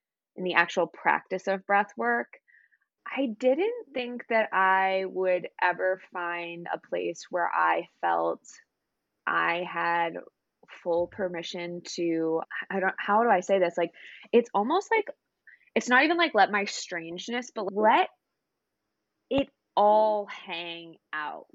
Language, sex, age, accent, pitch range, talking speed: English, female, 20-39, American, 175-235 Hz, 135 wpm